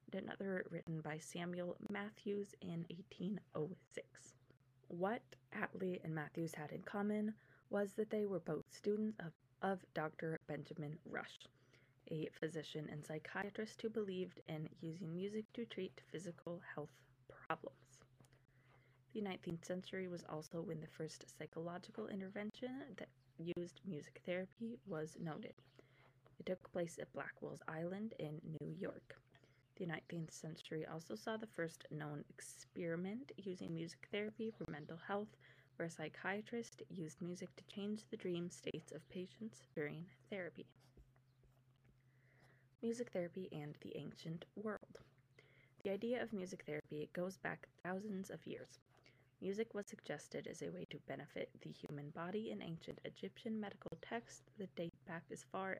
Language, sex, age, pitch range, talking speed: English, female, 20-39, 150-195 Hz, 140 wpm